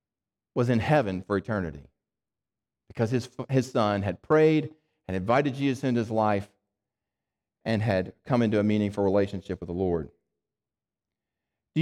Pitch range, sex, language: 115-155 Hz, male, English